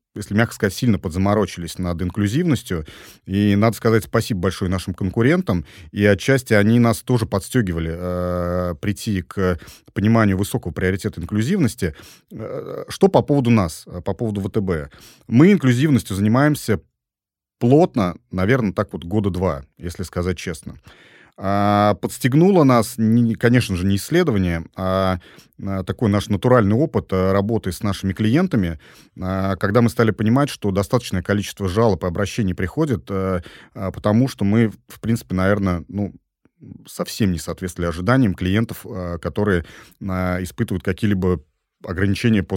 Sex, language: male, Russian